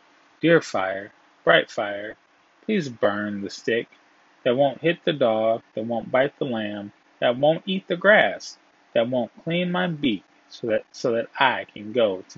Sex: male